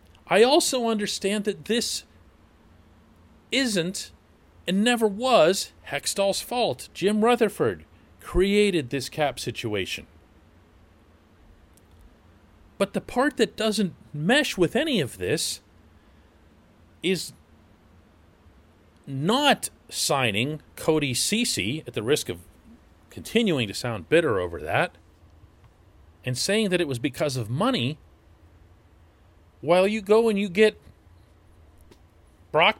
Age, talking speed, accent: 40-59, 105 wpm, American